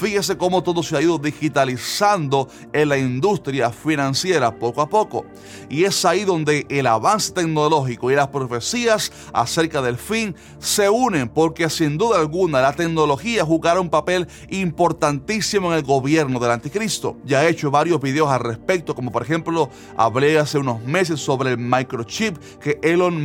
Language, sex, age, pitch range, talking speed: Spanish, male, 30-49, 130-180 Hz, 165 wpm